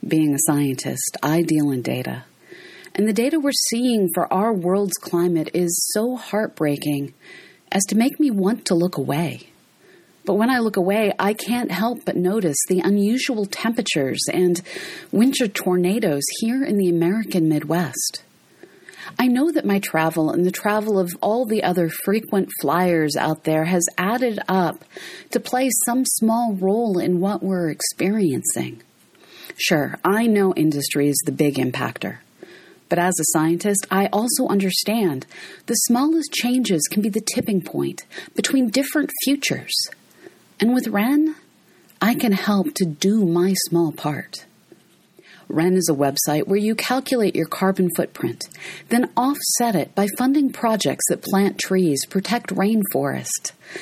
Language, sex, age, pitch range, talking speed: English, female, 40-59, 170-235 Hz, 150 wpm